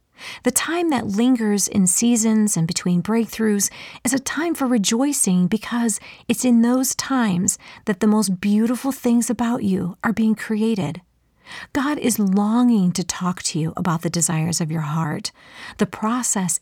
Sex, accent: female, American